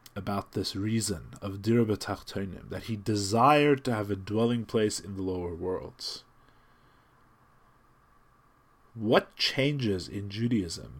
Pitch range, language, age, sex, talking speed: 100-125 Hz, English, 40-59, male, 115 wpm